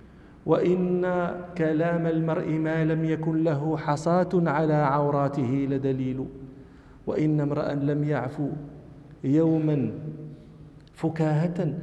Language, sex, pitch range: Arabic, male, 145-195 Hz